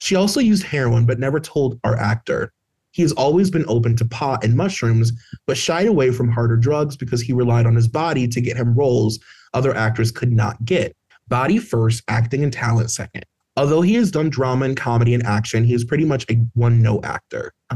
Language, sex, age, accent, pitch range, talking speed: English, male, 30-49, American, 115-140 Hz, 215 wpm